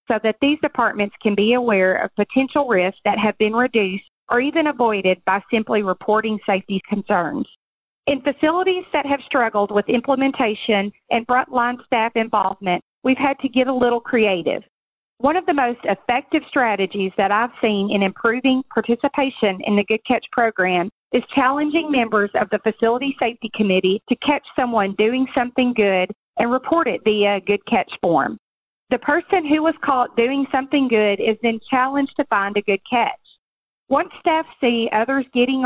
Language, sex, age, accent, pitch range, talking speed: English, female, 40-59, American, 205-265 Hz, 165 wpm